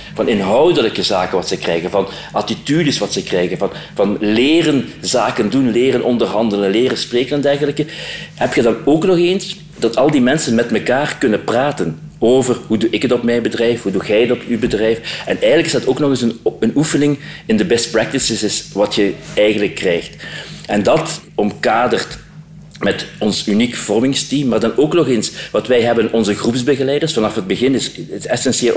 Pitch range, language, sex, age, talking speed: 110-150 Hz, Dutch, male, 40-59, 190 wpm